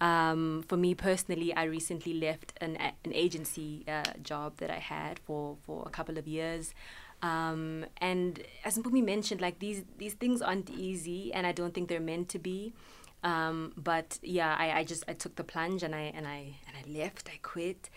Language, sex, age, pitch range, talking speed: English, female, 20-39, 155-175 Hz, 200 wpm